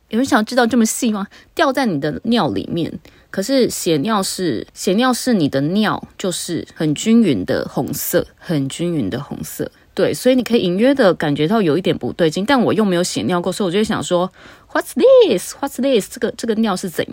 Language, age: Chinese, 20-39